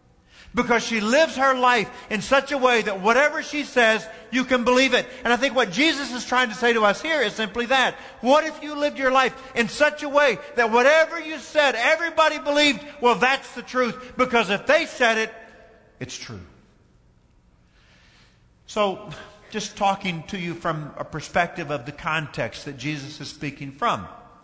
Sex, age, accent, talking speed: male, 50-69, American, 185 wpm